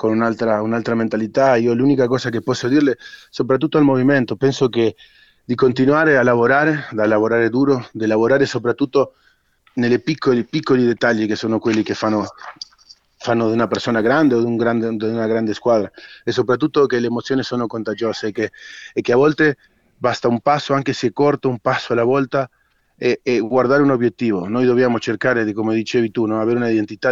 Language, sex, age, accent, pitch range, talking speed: Italian, male, 30-49, Argentinian, 110-130 Hz, 190 wpm